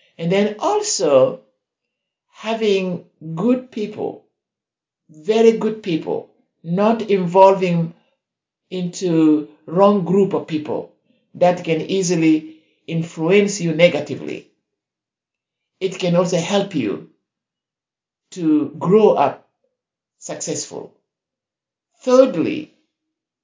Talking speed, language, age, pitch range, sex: 80 wpm, English, 60-79, 160-215 Hz, male